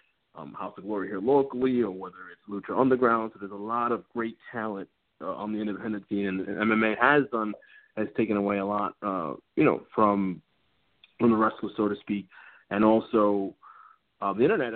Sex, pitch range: male, 105-125 Hz